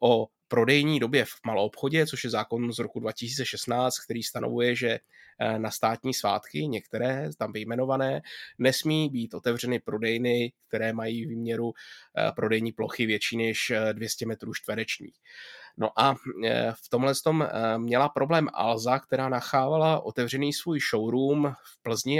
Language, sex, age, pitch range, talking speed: Czech, male, 20-39, 115-135 Hz, 135 wpm